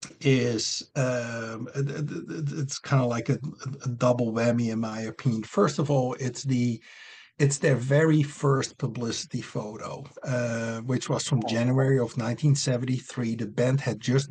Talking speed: 145 wpm